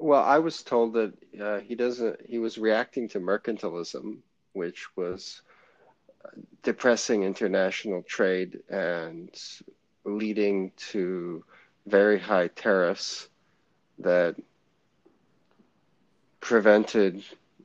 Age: 40-59